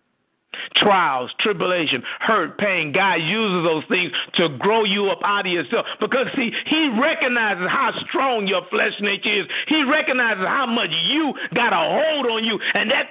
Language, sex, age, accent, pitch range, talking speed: English, male, 50-69, American, 190-270 Hz, 170 wpm